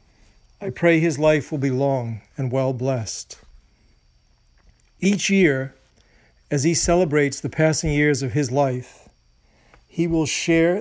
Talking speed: 130 wpm